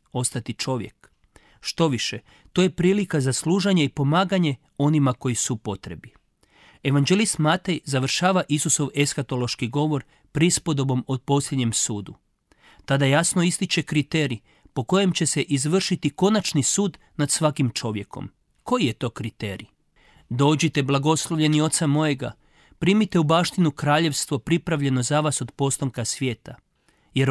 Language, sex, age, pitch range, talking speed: Croatian, male, 40-59, 125-160 Hz, 125 wpm